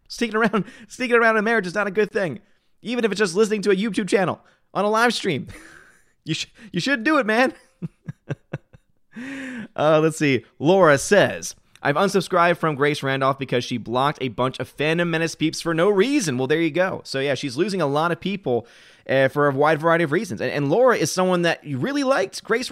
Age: 30-49